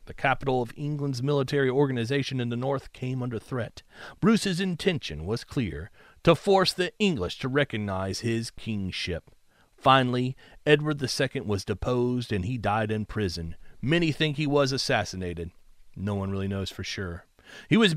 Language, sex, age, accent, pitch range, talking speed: English, male, 40-59, American, 120-165 Hz, 155 wpm